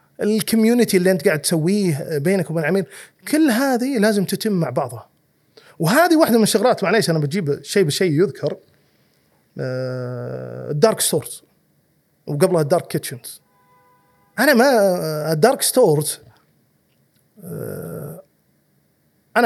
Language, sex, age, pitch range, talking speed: Arabic, male, 30-49, 150-205 Hz, 115 wpm